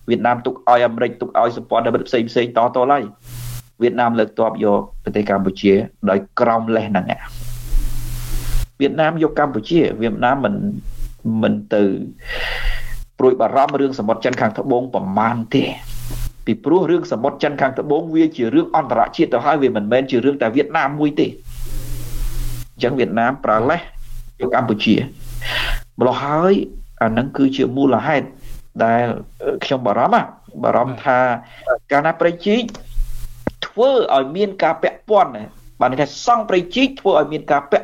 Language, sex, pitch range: English, male, 120-155 Hz